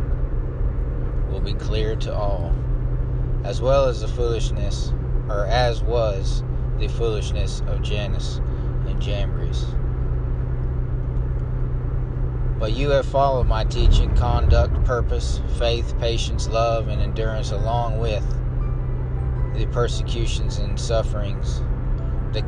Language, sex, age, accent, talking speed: English, male, 30-49, American, 100 wpm